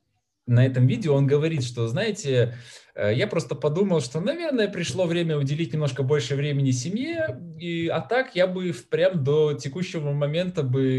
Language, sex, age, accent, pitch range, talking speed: Russian, male, 20-39, native, 110-140 Hz, 155 wpm